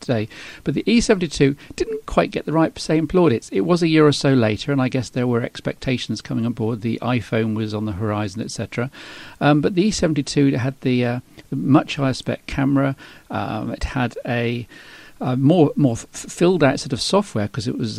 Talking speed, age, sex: 205 wpm, 50-69, male